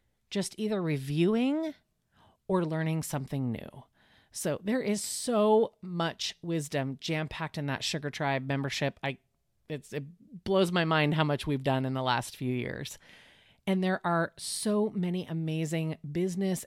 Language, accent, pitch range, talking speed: English, American, 140-185 Hz, 150 wpm